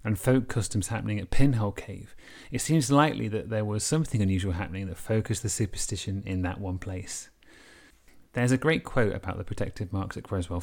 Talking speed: 190 wpm